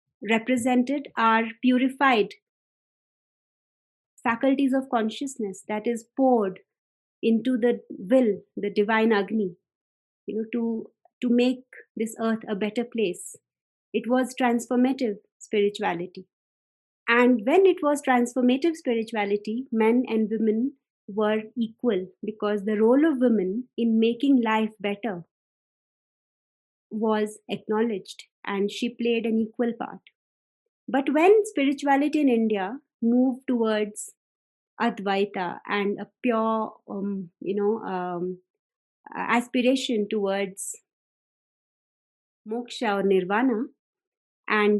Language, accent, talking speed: English, Indian, 105 wpm